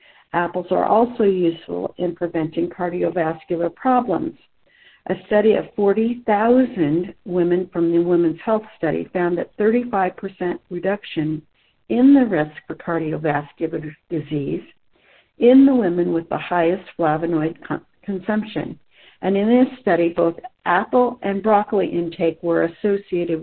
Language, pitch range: English, 165-210 Hz